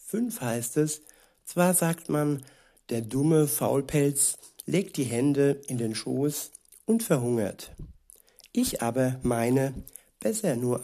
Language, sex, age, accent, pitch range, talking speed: German, male, 60-79, German, 125-145 Hz, 120 wpm